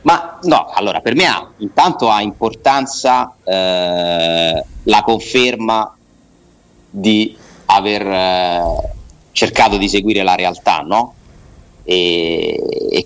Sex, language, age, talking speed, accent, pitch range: male, Italian, 30-49, 105 wpm, native, 90-115 Hz